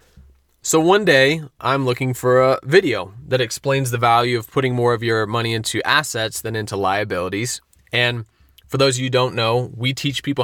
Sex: male